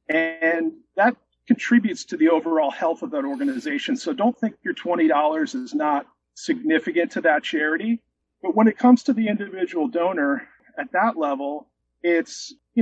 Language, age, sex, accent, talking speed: English, 40-59, male, American, 160 wpm